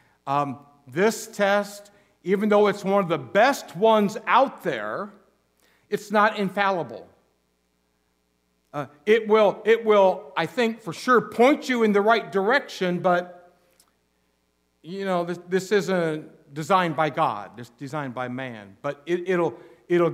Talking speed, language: 145 wpm, English